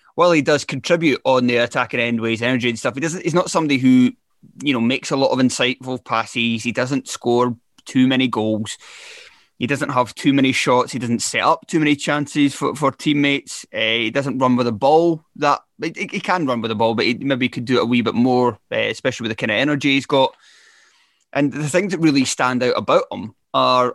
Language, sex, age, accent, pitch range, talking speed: English, male, 20-39, British, 115-145 Hz, 235 wpm